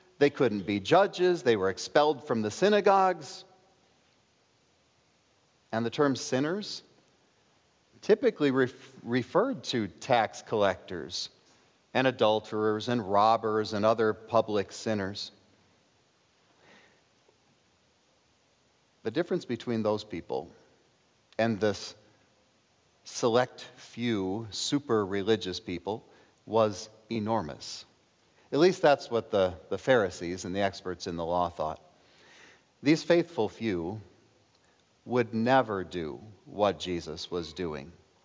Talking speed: 105 wpm